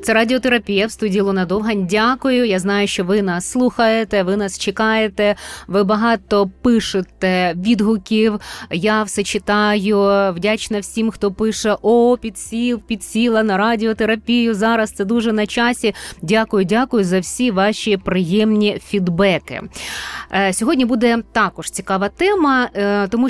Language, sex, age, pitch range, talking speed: Ukrainian, female, 20-39, 190-245 Hz, 130 wpm